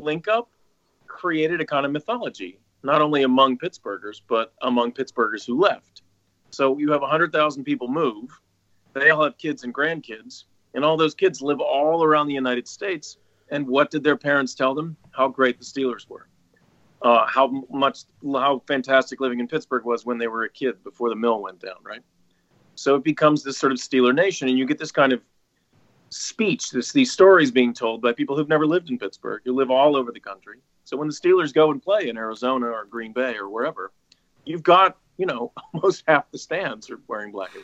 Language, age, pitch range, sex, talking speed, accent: English, 40-59, 120-160 Hz, male, 205 wpm, American